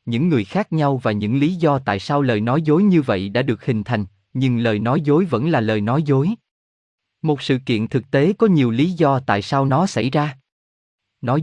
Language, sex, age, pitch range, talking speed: Vietnamese, male, 20-39, 115-155 Hz, 225 wpm